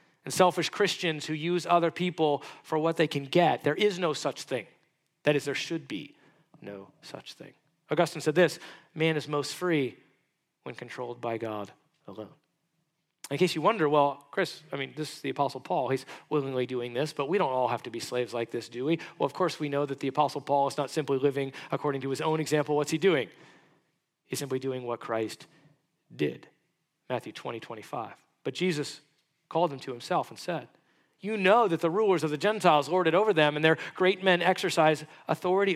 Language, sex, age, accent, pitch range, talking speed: English, male, 40-59, American, 140-180 Hz, 205 wpm